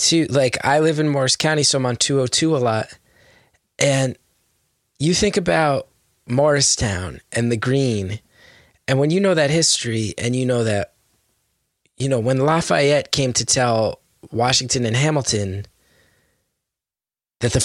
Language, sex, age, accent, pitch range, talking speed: English, male, 20-39, American, 115-140 Hz, 145 wpm